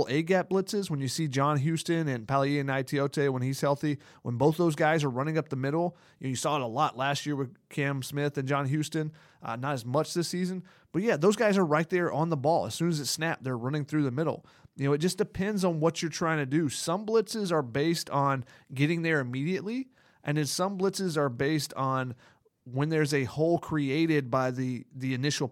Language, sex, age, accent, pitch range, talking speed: English, male, 30-49, American, 135-165 Hz, 230 wpm